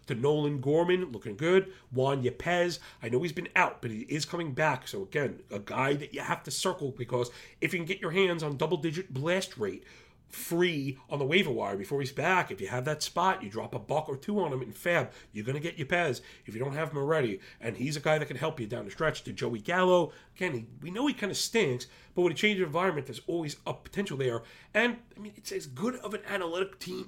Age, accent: 40-59, American